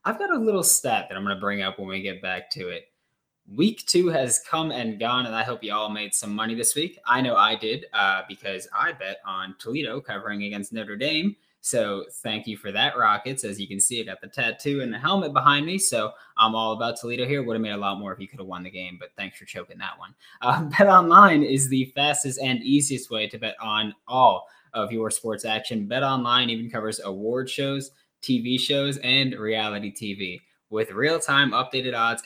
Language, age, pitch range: English, 20-39, 105-135 Hz